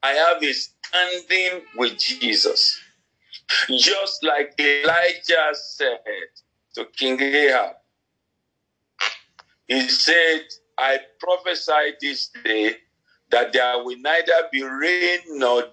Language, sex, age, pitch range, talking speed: English, male, 50-69, 135-220 Hz, 100 wpm